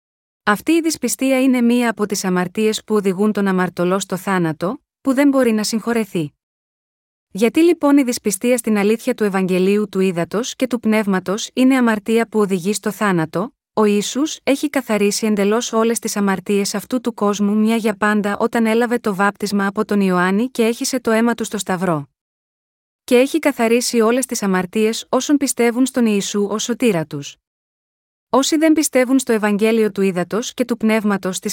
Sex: female